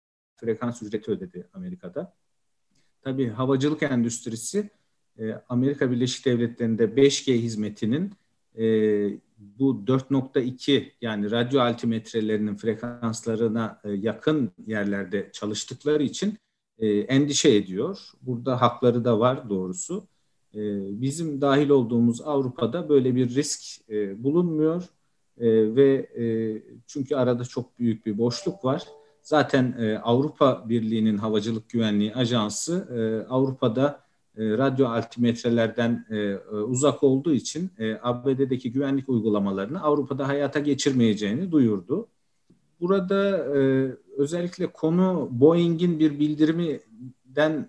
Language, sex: Turkish, male